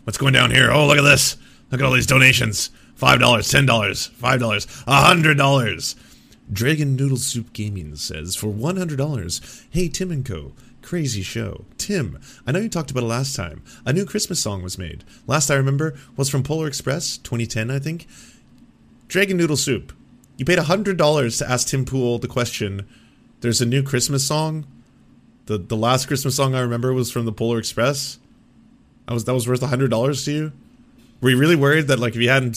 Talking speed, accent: 185 wpm, American